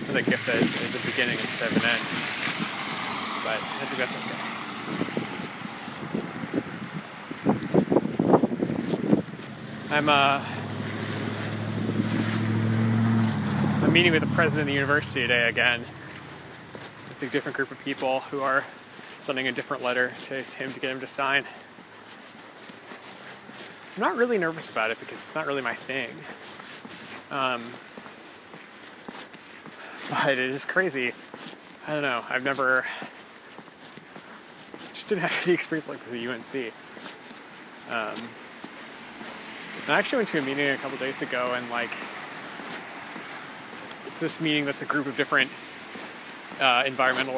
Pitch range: 125-150 Hz